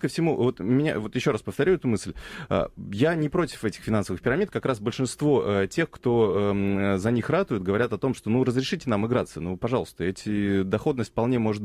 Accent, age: native, 30-49